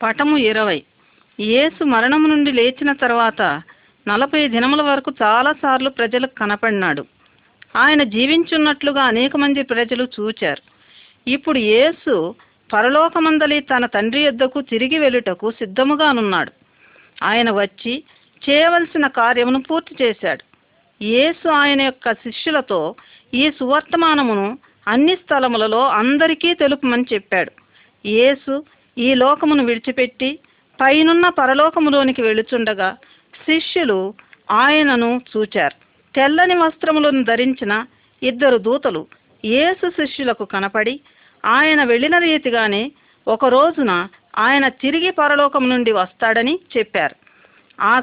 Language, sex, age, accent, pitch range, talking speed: Telugu, female, 40-59, native, 225-295 Hz, 90 wpm